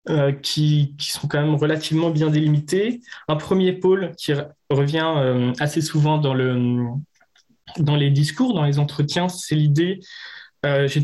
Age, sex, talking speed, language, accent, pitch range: 20-39, male, 170 wpm, French, French, 135-160 Hz